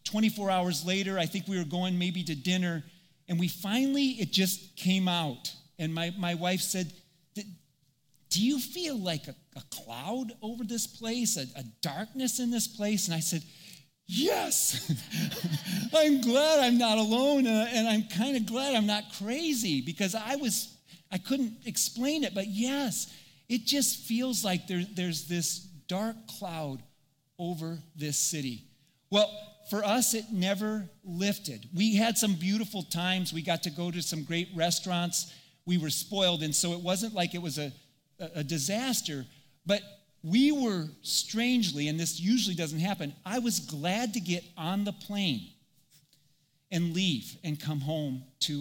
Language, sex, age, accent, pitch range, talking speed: English, male, 40-59, American, 155-215 Hz, 160 wpm